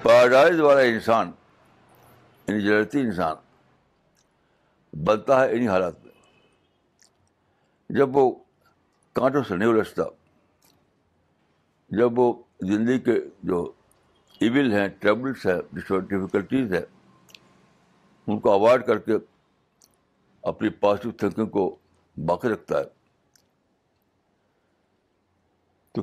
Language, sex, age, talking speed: Urdu, male, 60-79, 90 wpm